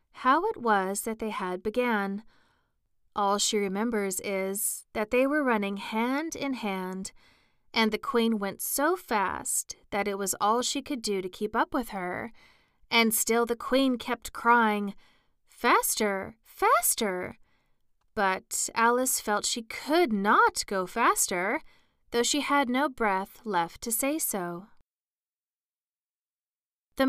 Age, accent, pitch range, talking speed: 30-49, American, 200-245 Hz, 135 wpm